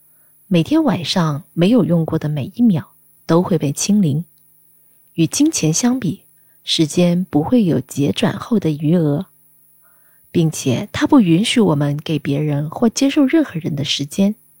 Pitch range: 150-195 Hz